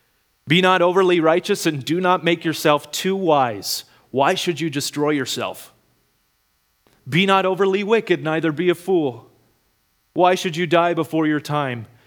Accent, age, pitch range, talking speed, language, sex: American, 30-49, 115-160 Hz, 155 wpm, English, male